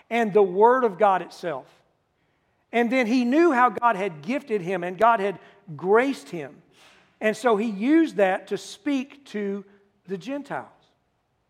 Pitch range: 185-245 Hz